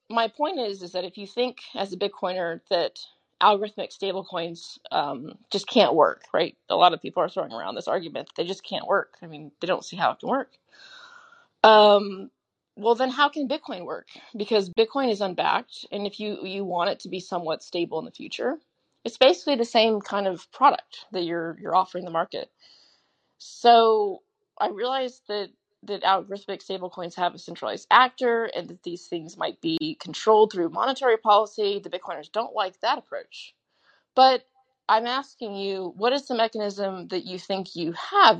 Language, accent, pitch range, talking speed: English, American, 185-250 Hz, 185 wpm